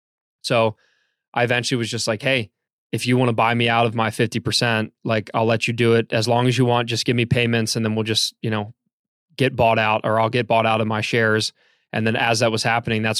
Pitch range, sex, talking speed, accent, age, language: 115-130 Hz, male, 260 wpm, American, 20-39, English